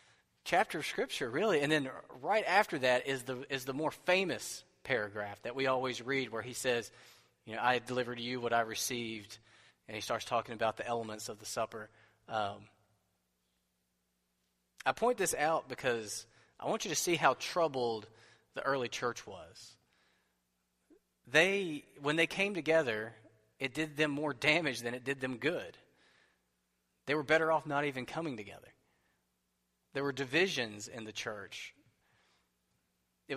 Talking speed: 160 wpm